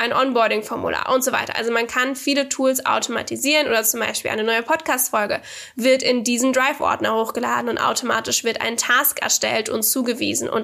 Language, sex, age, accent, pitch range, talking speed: German, female, 10-29, German, 230-275 Hz, 175 wpm